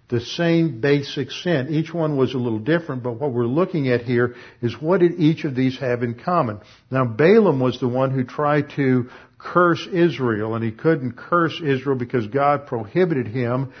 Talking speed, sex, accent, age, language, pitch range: 190 wpm, male, American, 60-79, English, 115-135 Hz